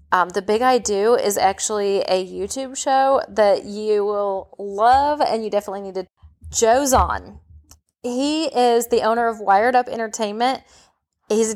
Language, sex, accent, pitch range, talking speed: English, female, American, 190-230 Hz, 160 wpm